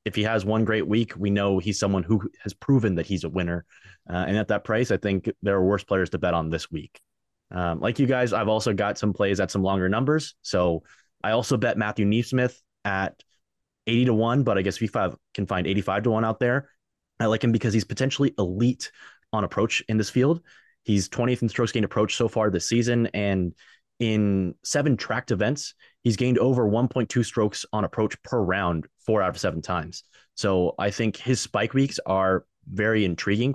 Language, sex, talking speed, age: English, male, 210 wpm, 20-39